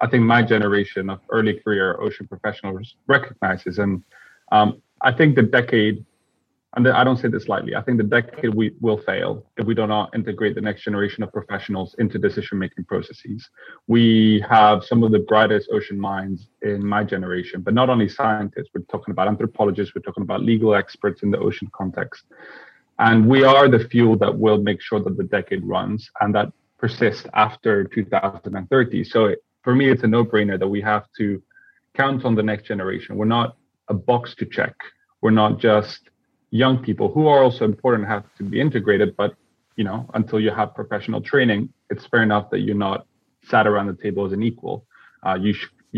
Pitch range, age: 105-120 Hz, 30-49